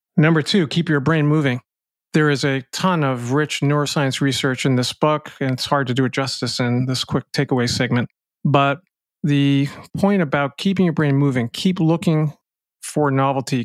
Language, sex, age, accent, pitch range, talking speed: English, male, 40-59, American, 125-155 Hz, 180 wpm